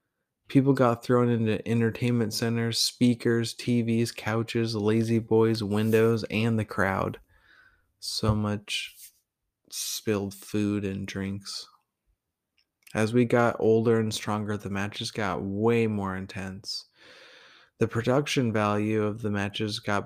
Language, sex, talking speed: English, male, 120 wpm